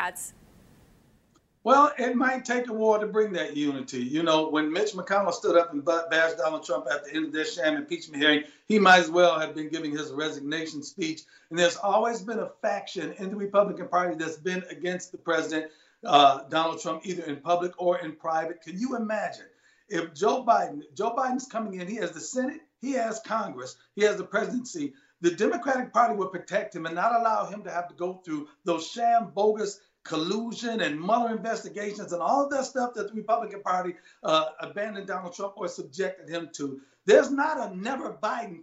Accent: American